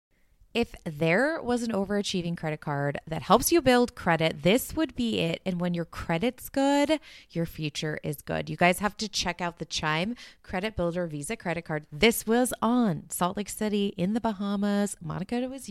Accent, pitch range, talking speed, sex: American, 155-205 Hz, 185 wpm, female